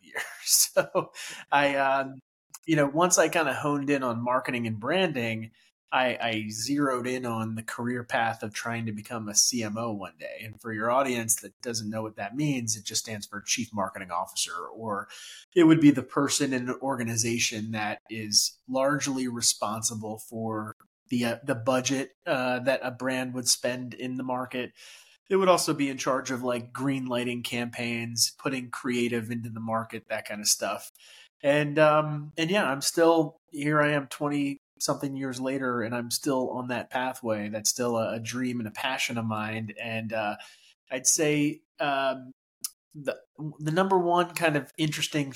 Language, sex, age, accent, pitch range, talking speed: English, male, 30-49, American, 115-140 Hz, 180 wpm